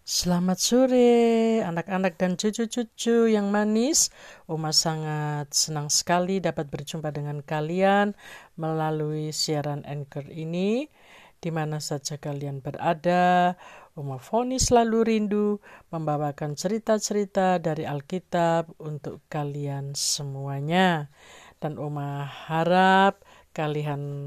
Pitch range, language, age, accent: 150-185 Hz, Indonesian, 50-69, native